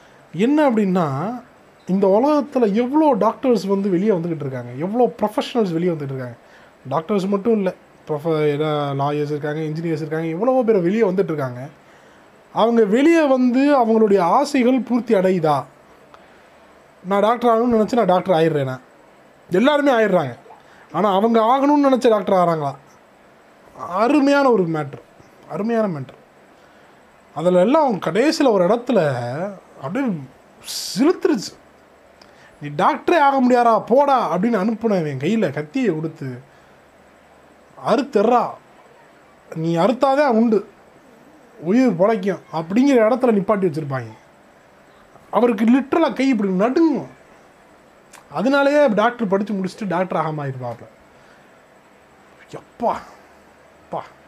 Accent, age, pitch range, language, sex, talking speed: native, 20-39, 160-245 Hz, Tamil, male, 105 wpm